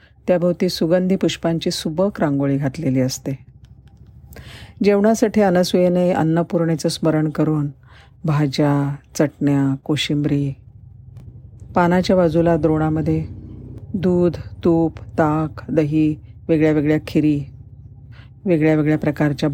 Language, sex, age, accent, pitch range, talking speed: Marathi, female, 50-69, native, 145-165 Hz, 85 wpm